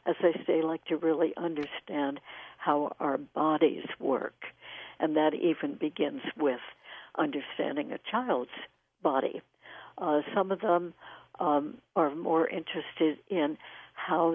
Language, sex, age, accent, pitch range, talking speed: English, female, 60-79, American, 155-180 Hz, 130 wpm